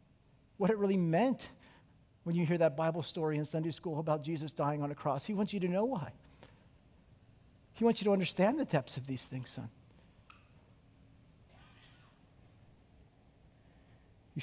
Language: English